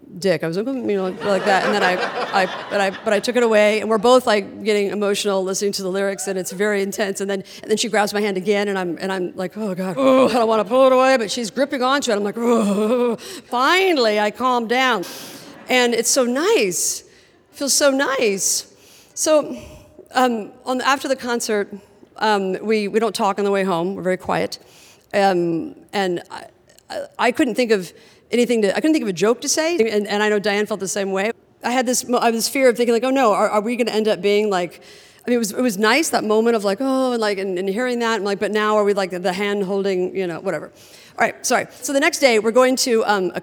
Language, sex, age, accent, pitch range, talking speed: English, female, 50-69, American, 195-245 Hz, 255 wpm